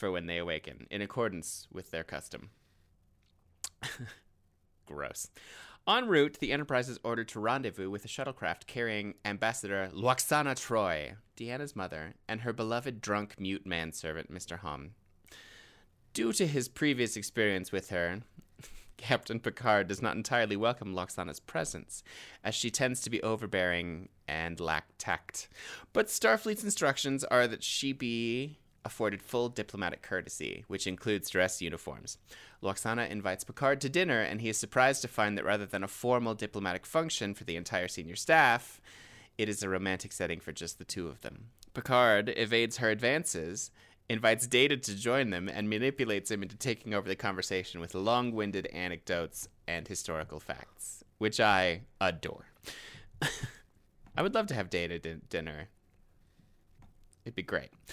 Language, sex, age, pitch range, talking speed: English, male, 30-49, 90-120 Hz, 150 wpm